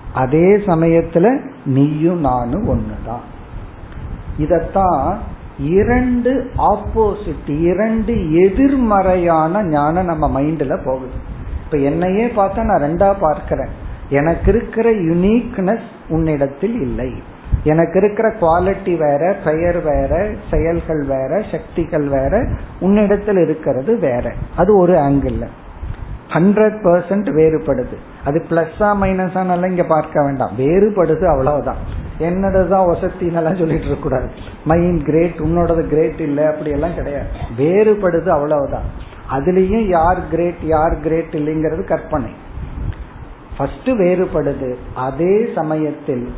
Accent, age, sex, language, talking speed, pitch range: native, 50-69, male, Tamil, 70 wpm, 145-195 Hz